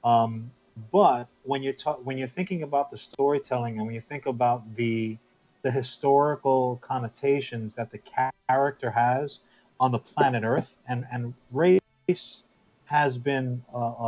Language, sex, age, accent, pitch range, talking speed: English, male, 40-59, American, 115-140 Hz, 145 wpm